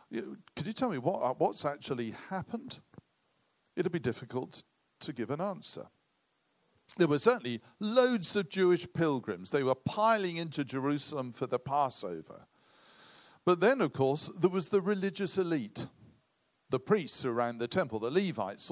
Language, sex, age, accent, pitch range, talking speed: English, male, 50-69, British, 130-185 Hz, 150 wpm